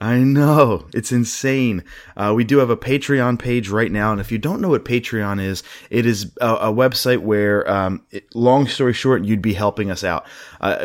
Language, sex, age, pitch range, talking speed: English, male, 30-49, 100-125 Hz, 210 wpm